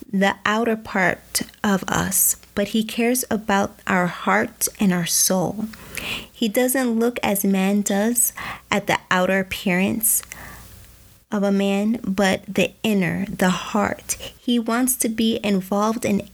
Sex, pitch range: female, 185-220 Hz